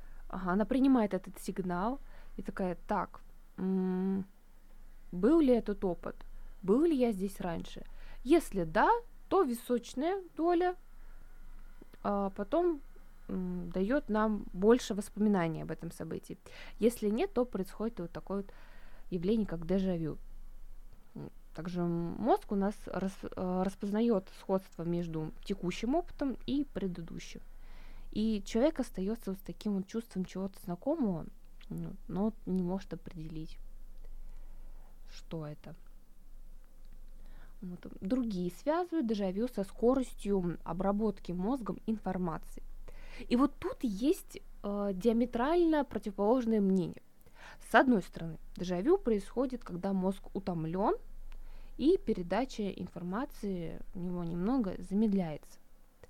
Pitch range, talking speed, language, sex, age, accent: 185-245 Hz, 105 wpm, Russian, female, 20-39, native